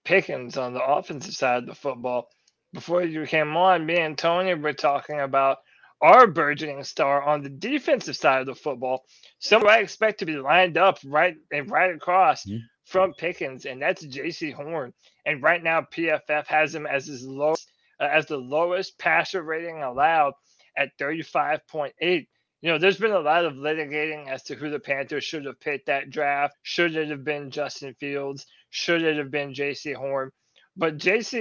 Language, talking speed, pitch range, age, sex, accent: English, 185 wpm, 145-180 Hz, 20-39, male, American